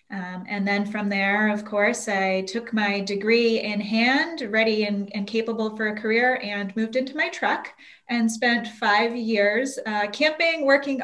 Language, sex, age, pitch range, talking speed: English, female, 20-39, 185-210 Hz, 175 wpm